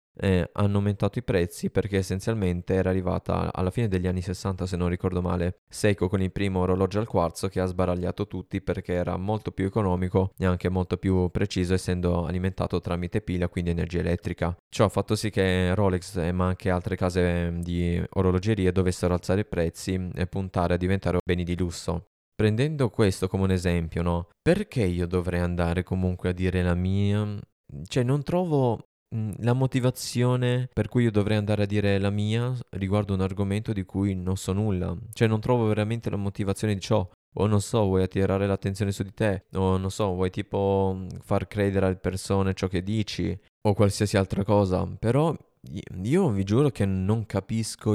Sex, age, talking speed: male, 20-39, 180 wpm